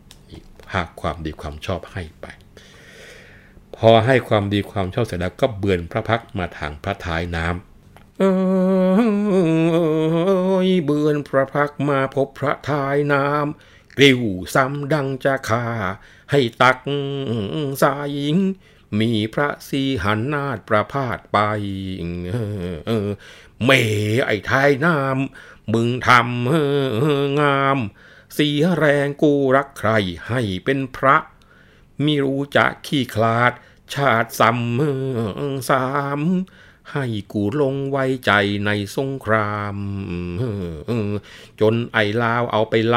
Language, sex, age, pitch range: Thai, male, 60-79, 110-145 Hz